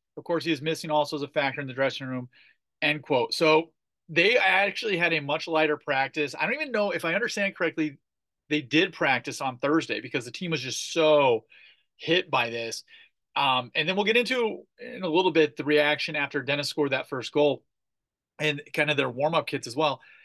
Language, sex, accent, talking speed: English, male, American, 210 wpm